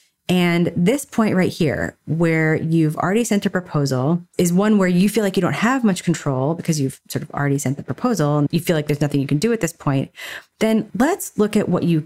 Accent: American